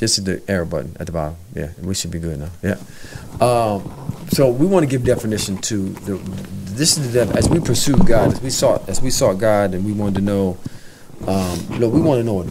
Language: English